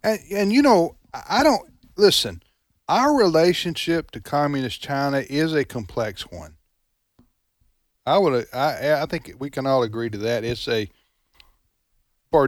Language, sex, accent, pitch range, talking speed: English, male, American, 115-155 Hz, 145 wpm